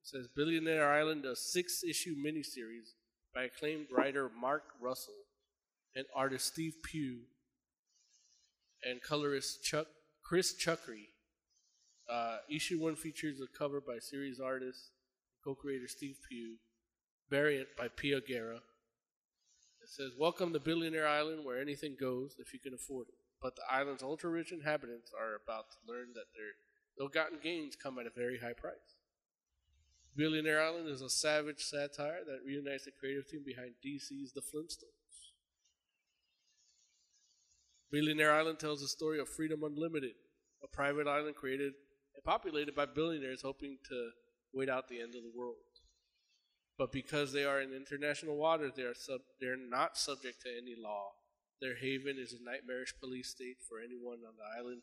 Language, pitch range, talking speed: English, 125-150 Hz, 150 wpm